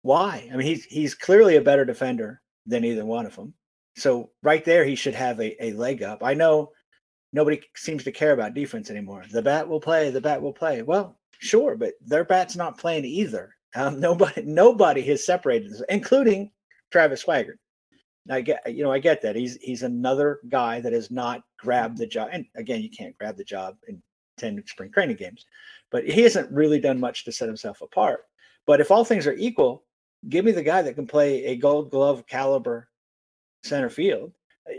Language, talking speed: English, 200 wpm